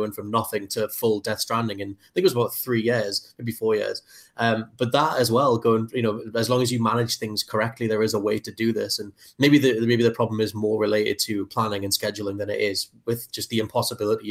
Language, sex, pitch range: English, male, 105-120 Hz